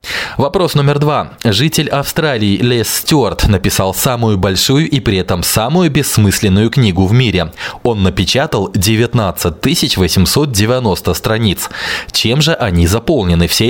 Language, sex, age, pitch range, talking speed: Russian, male, 20-39, 95-135 Hz, 125 wpm